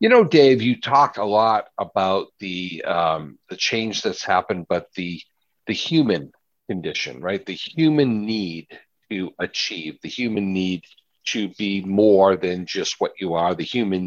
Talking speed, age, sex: 160 wpm, 60-79, male